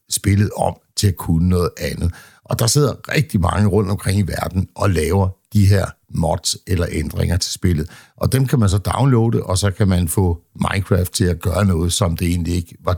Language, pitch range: Danish, 90-110 Hz